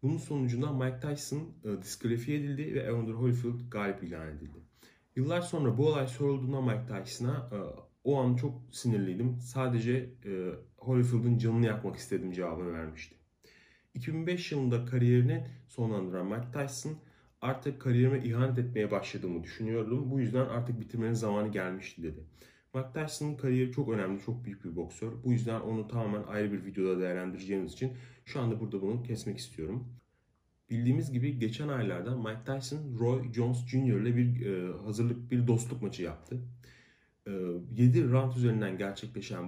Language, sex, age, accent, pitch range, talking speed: Turkish, male, 40-59, native, 105-130 Hz, 145 wpm